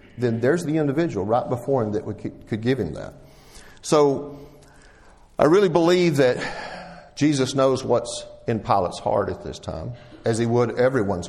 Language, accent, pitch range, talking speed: English, American, 110-140 Hz, 160 wpm